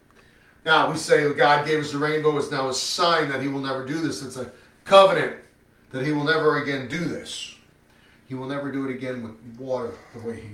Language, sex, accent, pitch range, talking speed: English, male, American, 95-155 Hz, 220 wpm